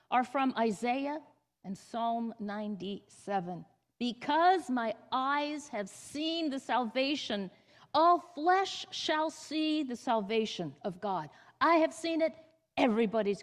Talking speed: 115 wpm